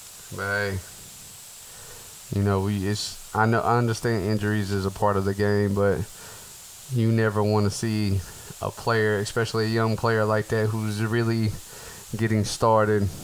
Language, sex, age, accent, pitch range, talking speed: English, male, 20-39, American, 100-115 Hz, 160 wpm